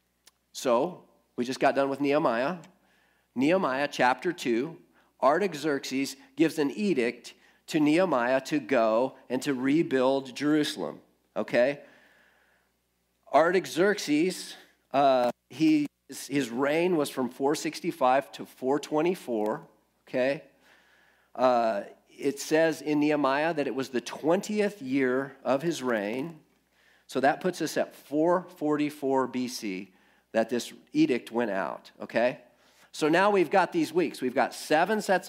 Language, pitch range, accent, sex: English, 135-180 Hz, American, male